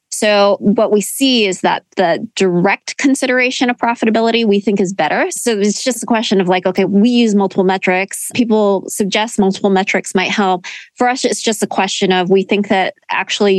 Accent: American